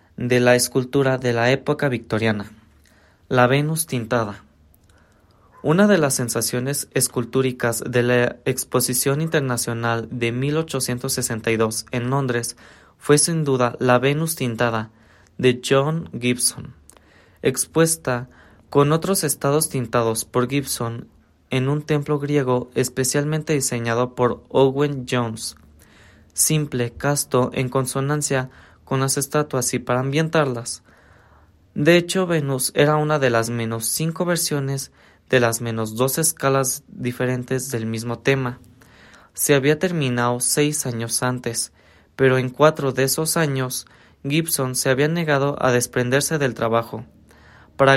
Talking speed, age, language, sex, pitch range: 120 wpm, 20-39, Spanish, male, 120-145 Hz